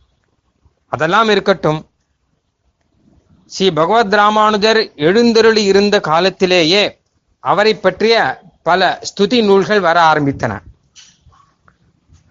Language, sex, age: Tamil, male, 30-49